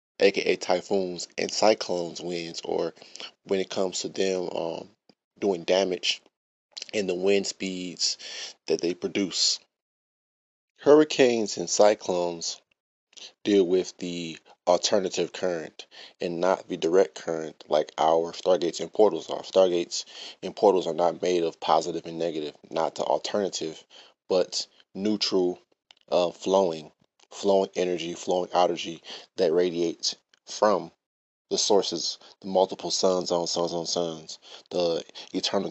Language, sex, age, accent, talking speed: English, male, 20-39, American, 125 wpm